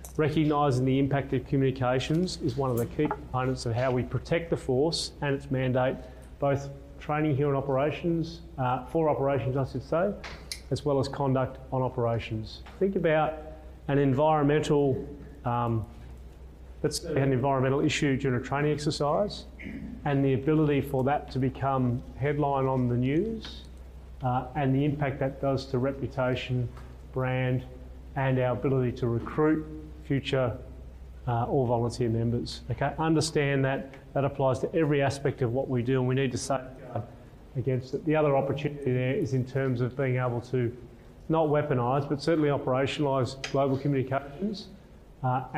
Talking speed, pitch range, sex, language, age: 155 wpm, 125-150 Hz, male, English, 30-49